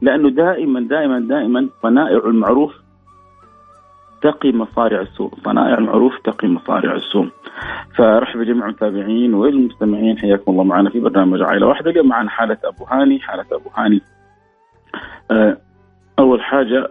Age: 40-59